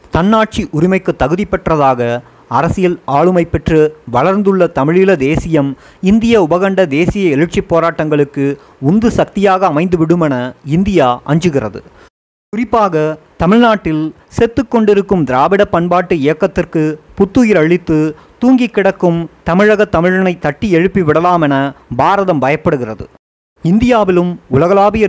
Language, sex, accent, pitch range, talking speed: Tamil, male, native, 155-200 Hz, 95 wpm